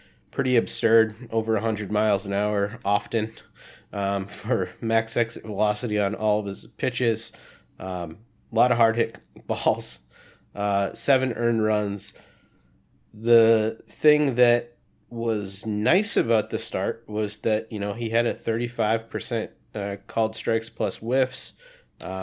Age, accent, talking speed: 30-49, American, 130 wpm